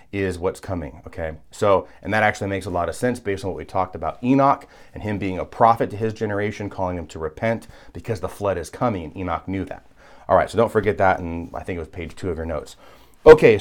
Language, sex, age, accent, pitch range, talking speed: English, male, 30-49, American, 95-120 Hz, 255 wpm